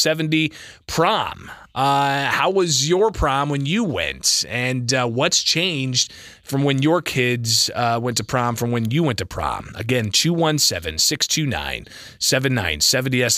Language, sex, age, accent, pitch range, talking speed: English, male, 20-39, American, 120-165 Hz, 140 wpm